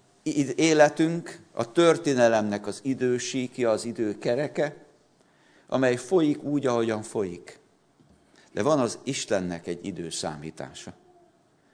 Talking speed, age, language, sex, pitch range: 90 wpm, 50-69, Hungarian, male, 120-165 Hz